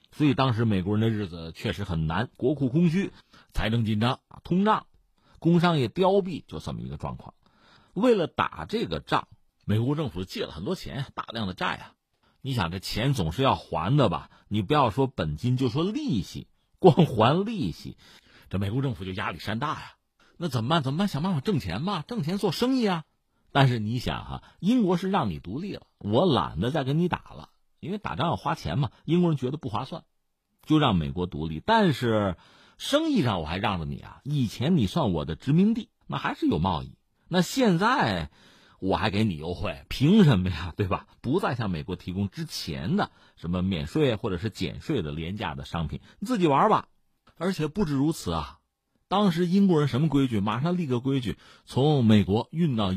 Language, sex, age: Chinese, male, 50-69